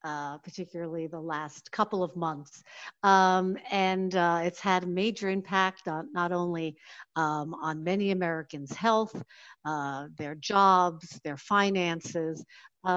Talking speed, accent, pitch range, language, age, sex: 130 wpm, American, 175-220 Hz, English, 50-69, female